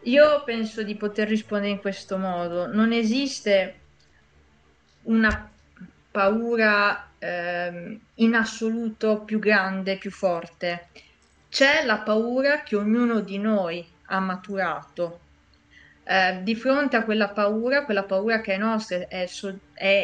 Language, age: Italian, 30-49